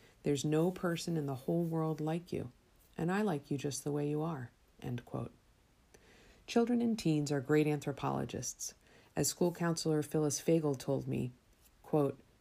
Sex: female